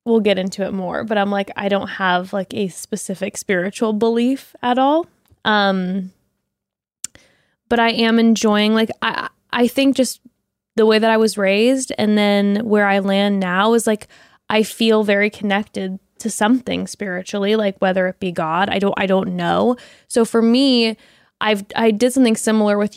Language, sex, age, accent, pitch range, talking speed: English, female, 10-29, American, 195-230 Hz, 180 wpm